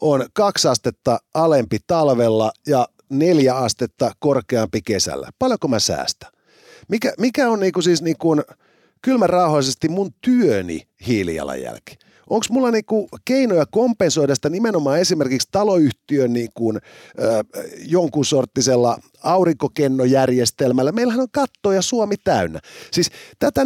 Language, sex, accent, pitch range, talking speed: Finnish, male, native, 125-200 Hz, 105 wpm